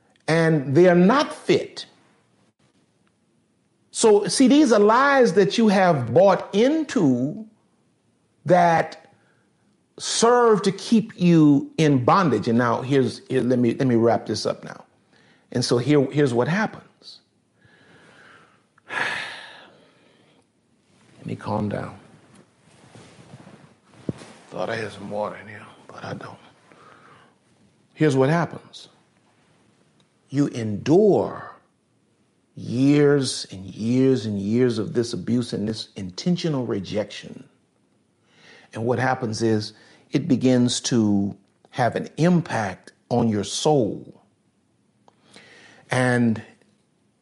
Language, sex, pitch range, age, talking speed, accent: English, male, 115-170 Hz, 50-69, 105 wpm, American